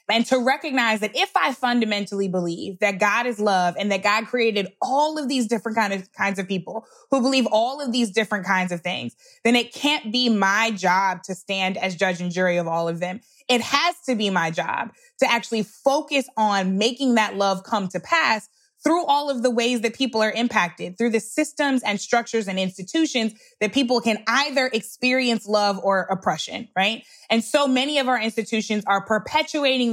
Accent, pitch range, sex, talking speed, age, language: American, 200-255 Hz, female, 200 wpm, 20-39, English